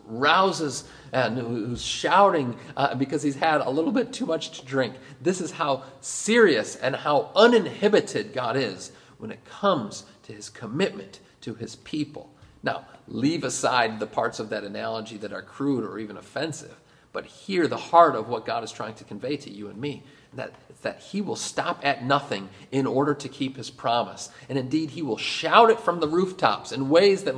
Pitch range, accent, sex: 125-155 Hz, American, male